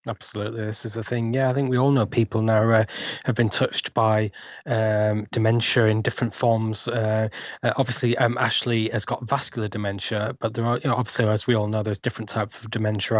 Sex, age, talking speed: male, 10-29, 210 wpm